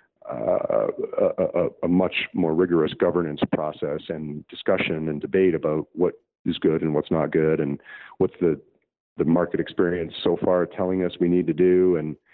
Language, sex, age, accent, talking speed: English, male, 40-59, American, 175 wpm